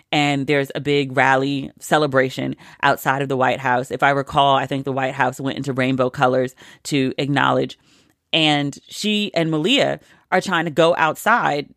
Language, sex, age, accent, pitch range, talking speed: English, female, 30-49, American, 135-175 Hz, 175 wpm